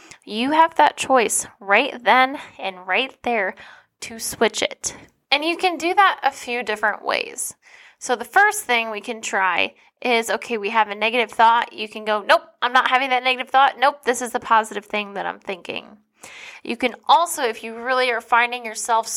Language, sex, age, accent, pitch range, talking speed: English, female, 10-29, American, 210-275 Hz, 195 wpm